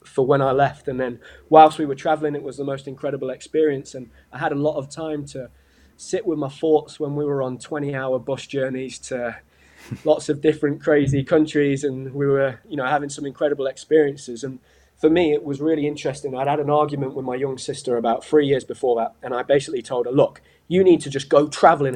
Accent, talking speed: British, 225 wpm